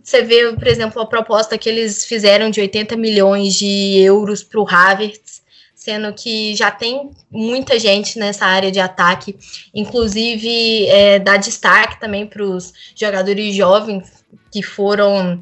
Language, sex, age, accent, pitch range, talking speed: Portuguese, female, 10-29, Brazilian, 195-230 Hz, 150 wpm